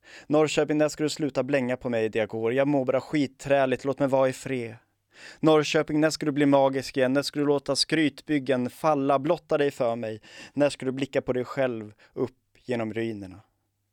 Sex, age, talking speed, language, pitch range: male, 20-39, 200 wpm, Swedish, 115-140 Hz